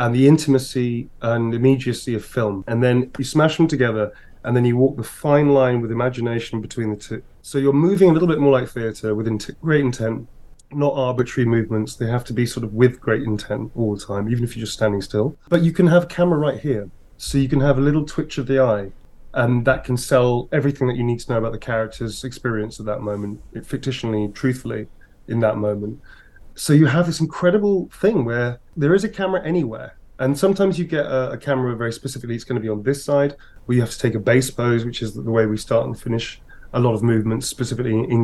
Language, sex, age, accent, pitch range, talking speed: English, male, 30-49, British, 115-140 Hz, 235 wpm